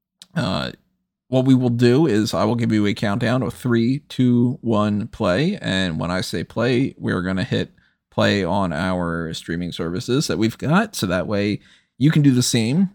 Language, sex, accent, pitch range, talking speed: English, male, American, 105-145 Hz, 200 wpm